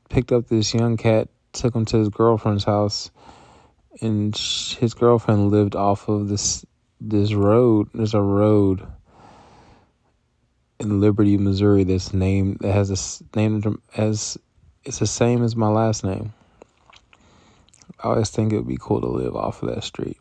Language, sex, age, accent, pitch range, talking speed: English, male, 20-39, American, 100-115 Hz, 155 wpm